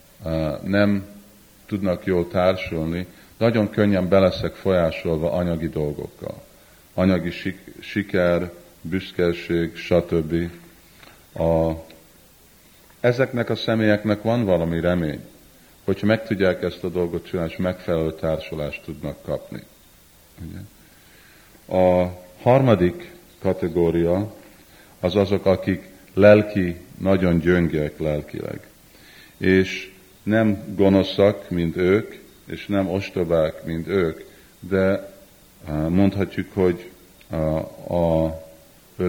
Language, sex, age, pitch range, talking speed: Hungarian, male, 50-69, 80-95 Hz, 95 wpm